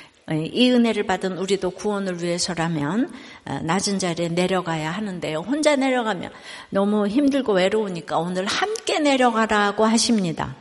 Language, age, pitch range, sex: Korean, 60-79, 185-260 Hz, female